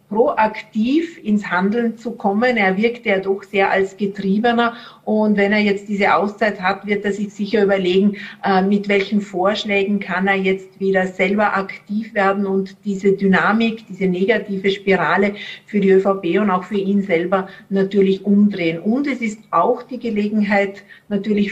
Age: 50-69